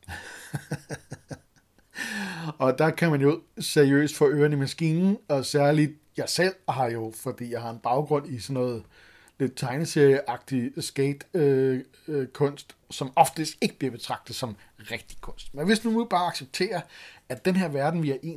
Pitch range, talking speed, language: 125-165 Hz, 165 wpm, Danish